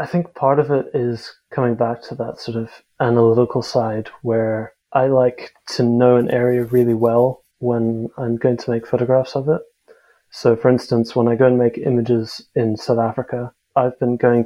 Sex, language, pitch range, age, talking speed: male, English, 115-130 Hz, 20-39, 190 wpm